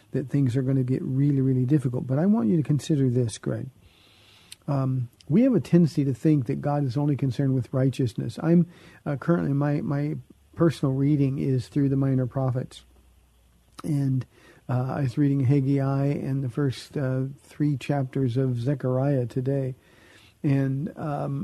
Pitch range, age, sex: 130-155 Hz, 50-69, male